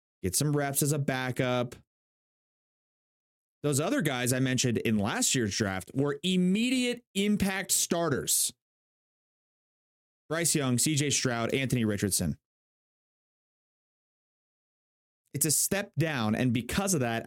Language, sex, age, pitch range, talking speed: English, male, 30-49, 125-170 Hz, 115 wpm